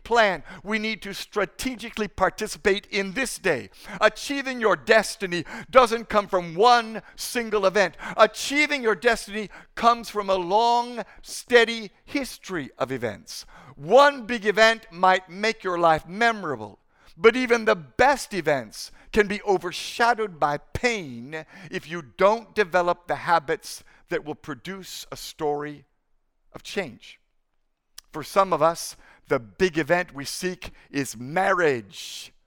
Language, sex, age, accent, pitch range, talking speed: English, male, 60-79, American, 150-215 Hz, 130 wpm